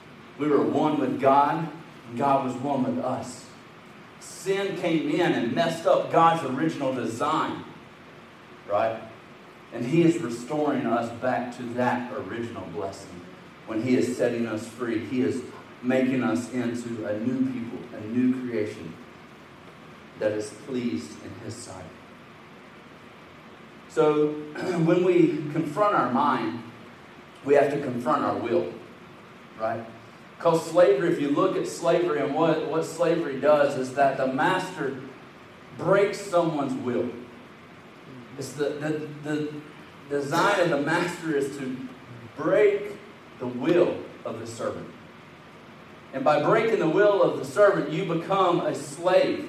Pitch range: 125-170 Hz